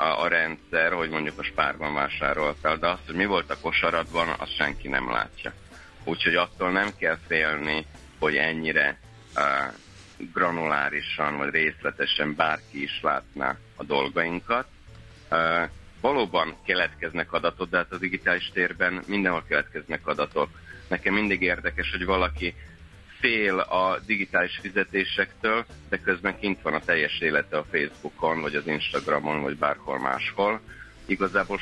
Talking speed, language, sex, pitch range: 135 wpm, Hungarian, male, 75-90 Hz